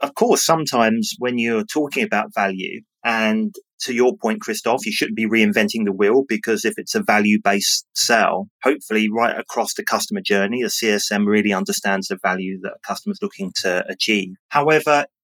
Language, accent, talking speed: English, British, 175 wpm